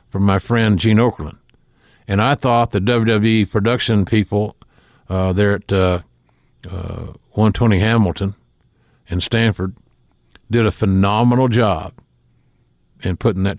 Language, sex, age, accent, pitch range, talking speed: English, male, 50-69, American, 95-115 Hz, 125 wpm